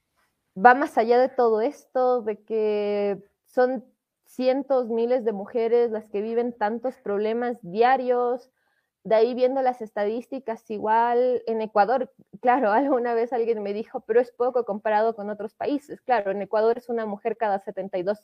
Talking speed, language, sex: 160 wpm, Spanish, female